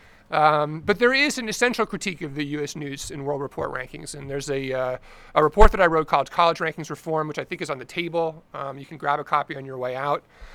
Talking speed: 250 wpm